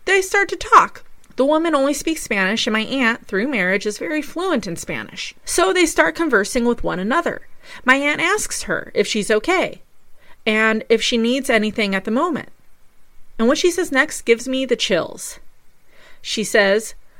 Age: 30-49